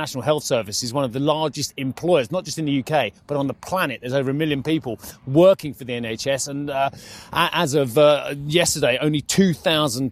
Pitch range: 130-155 Hz